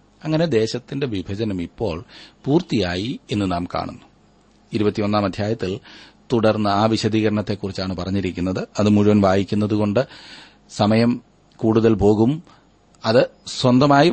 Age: 30-49